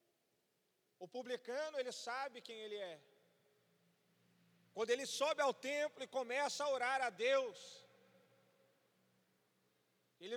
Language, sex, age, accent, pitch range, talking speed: Portuguese, male, 40-59, Brazilian, 230-300 Hz, 110 wpm